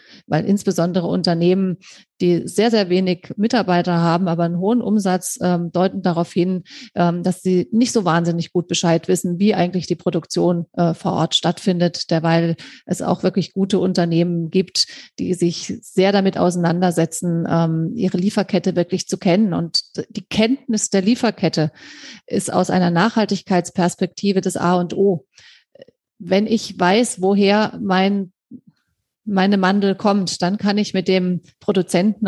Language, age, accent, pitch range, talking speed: German, 30-49, German, 175-200 Hz, 145 wpm